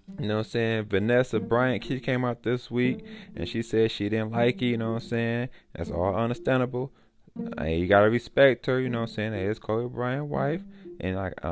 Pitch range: 95-130 Hz